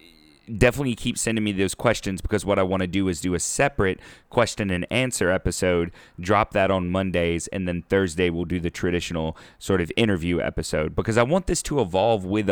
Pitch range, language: 90-115 Hz, English